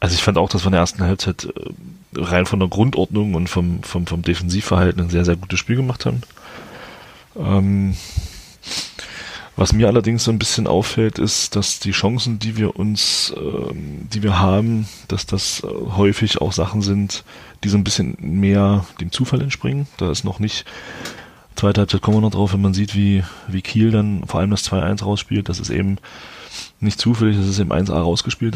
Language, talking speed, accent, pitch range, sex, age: German, 190 wpm, German, 95-105 Hz, male, 30-49